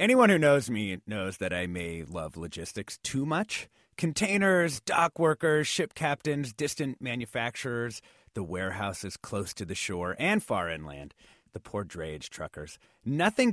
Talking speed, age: 145 wpm, 30-49